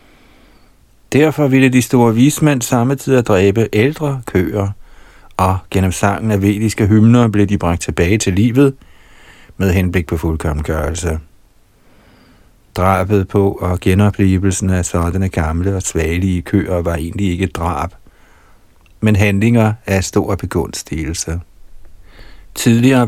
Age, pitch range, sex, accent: 60-79, 90-110 Hz, male, native